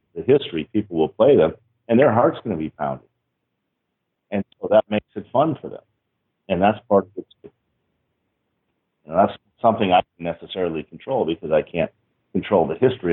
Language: English